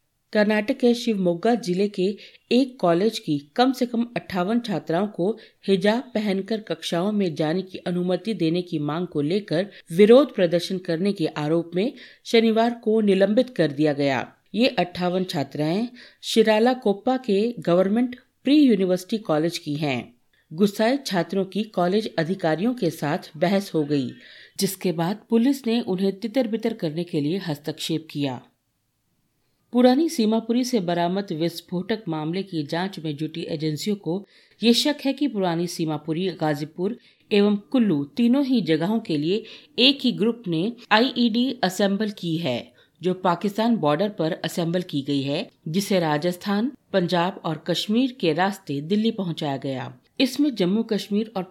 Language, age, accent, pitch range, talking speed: Hindi, 50-69, native, 165-220 Hz, 150 wpm